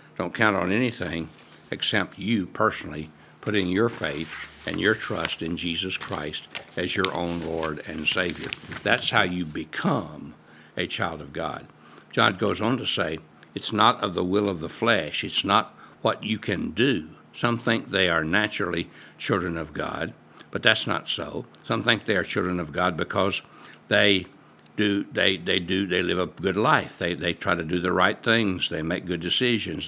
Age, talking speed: 60-79, 185 wpm